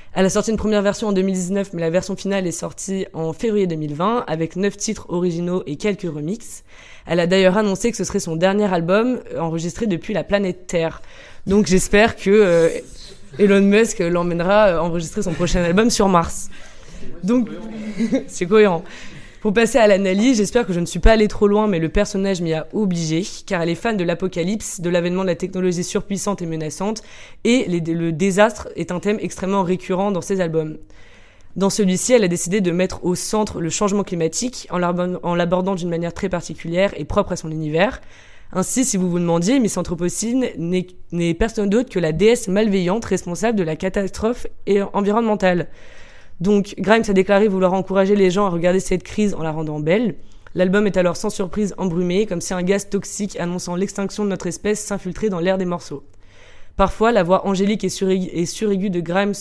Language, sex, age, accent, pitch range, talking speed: French, female, 20-39, French, 175-205 Hz, 195 wpm